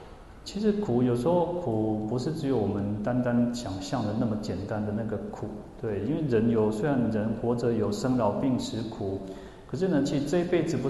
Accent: native